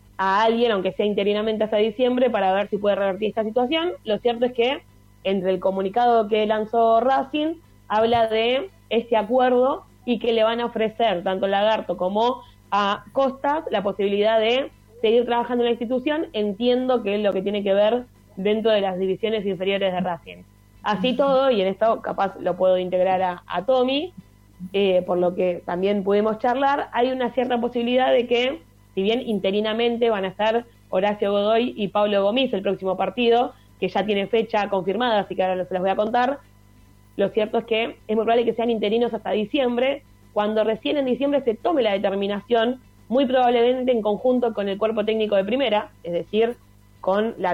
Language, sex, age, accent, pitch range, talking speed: Spanish, female, 20-39, Argentinian, 195-240 Hz, 185 wpm